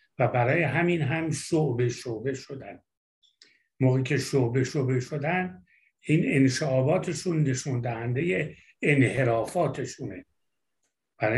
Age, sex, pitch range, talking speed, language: 60-79, male, 125-170 Hz, 95 wpm, Persian